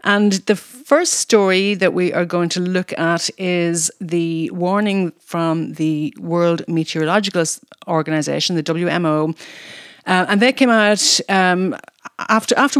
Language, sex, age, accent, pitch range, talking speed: English, female, 40-59, Irish, 160-205 Hz, 135 wpm